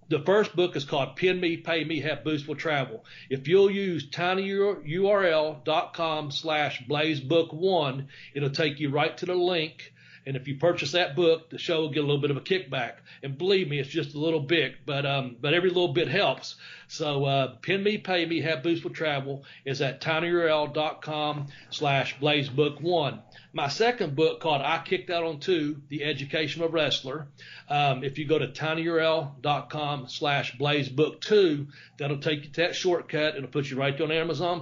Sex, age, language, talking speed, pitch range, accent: male, 40-59, English, 185 wpm, 140-165 Hz, American